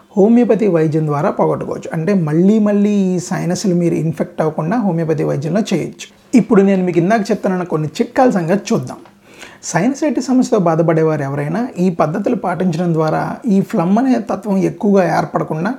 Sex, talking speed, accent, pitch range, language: male, 150 wpm, native, 160-205 Hz, Telugu